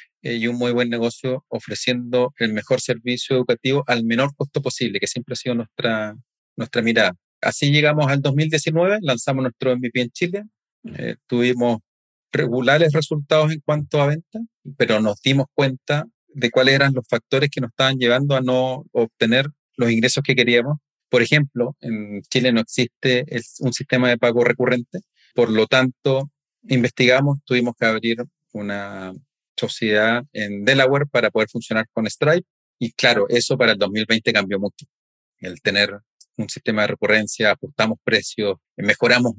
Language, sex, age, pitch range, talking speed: Spanish, male, 40-59, 110-135 Hz, 155 wpm